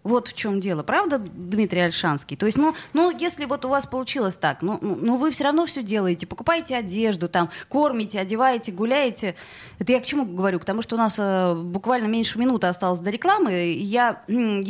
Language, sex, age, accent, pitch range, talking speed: Russian, female, 20-39, native, 185-255 Hz, 205 wpm